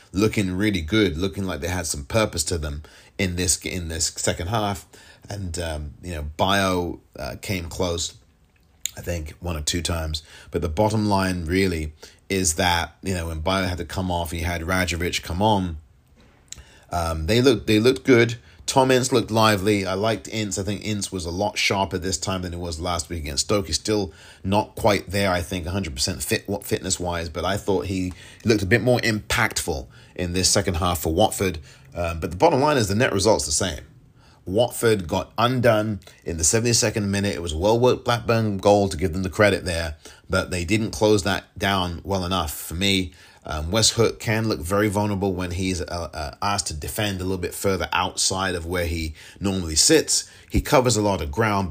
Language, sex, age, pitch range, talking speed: English, male, 30-49, 85-105 Hz, 205 wpm